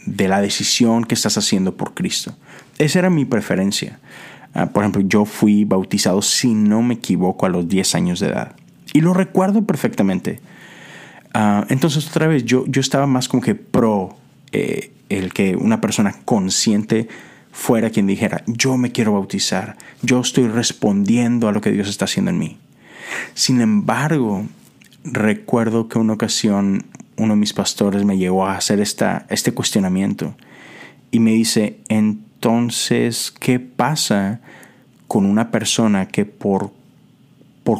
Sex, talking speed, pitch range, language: male, 150 wpm, 100-130 Hz, Spanish